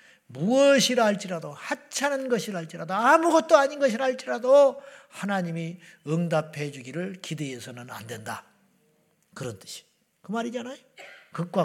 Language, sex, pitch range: Korean, male, 165-245 Hz